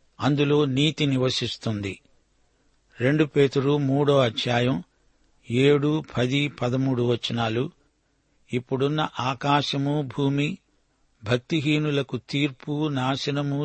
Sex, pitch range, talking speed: male, 125-150 Hz, 75 wpm